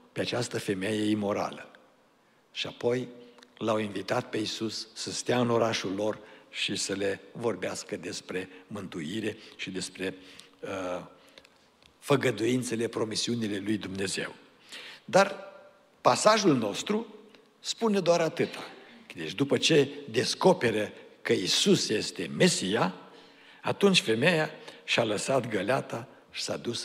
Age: 60-79